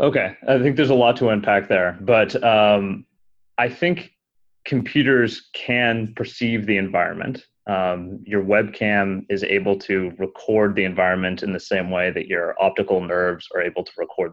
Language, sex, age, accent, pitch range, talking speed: English, male, 30-49, American, 95-110 Hz, 165 wpm